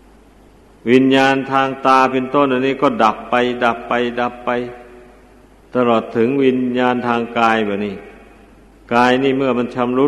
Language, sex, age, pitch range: Thai, male, 60-79, 110-130 Hz